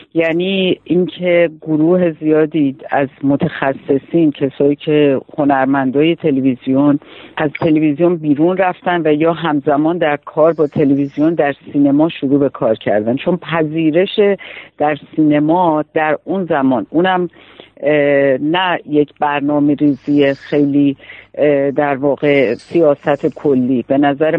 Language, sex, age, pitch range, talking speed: Persian, female, 50-69, 140-170 Hz, 115 wpm